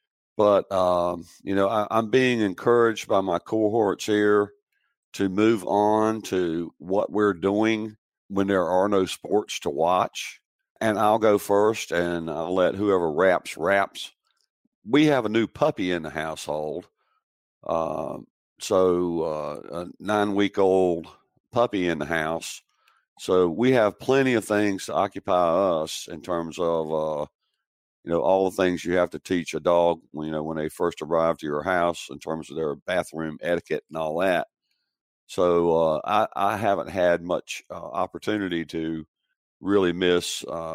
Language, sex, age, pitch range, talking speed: English, male, 50-69, 85-105 Hz, 165 wpm